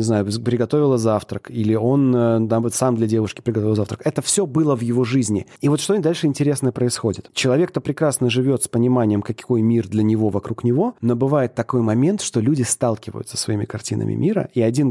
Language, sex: Russian, male